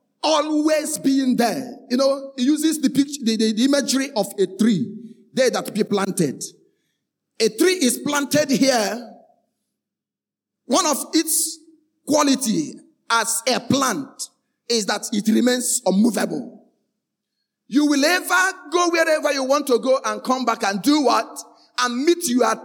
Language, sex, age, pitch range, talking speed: English, male, 50-69, 225-315 Hz, 145 wpm